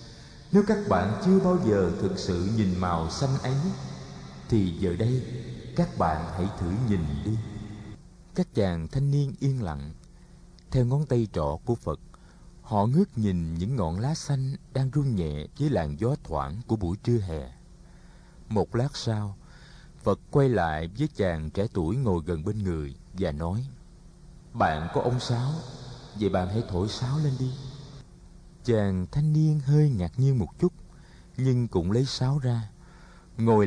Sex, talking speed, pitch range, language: male, 165 wpm, 95-150 Hz, Vietnamese